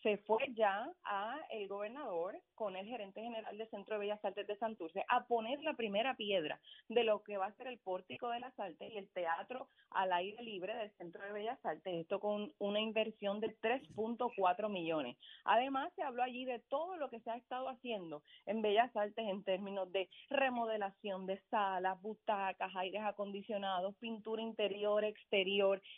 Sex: female